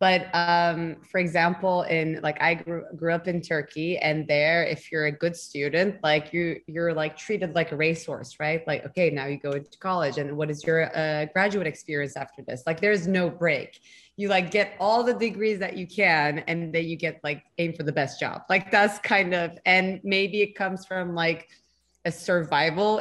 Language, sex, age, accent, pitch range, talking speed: English, female, 20-39, American, 155-190 Hz, 205 wpm